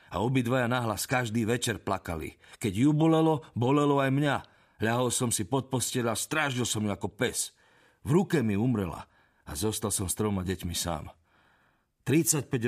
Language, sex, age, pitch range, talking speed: Slovak, male, 50-69, 95-125 Hz, 165 wpm